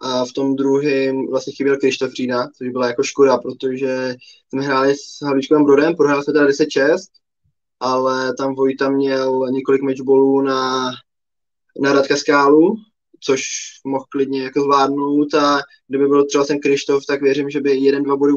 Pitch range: 130-145 Hz